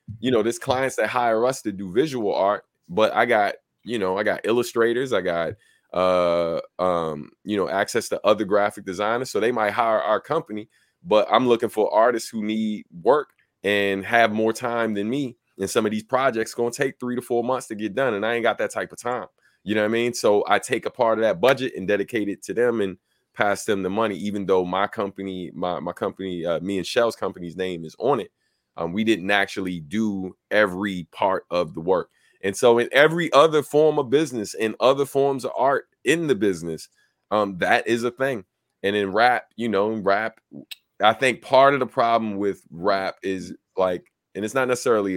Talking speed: 215 wpm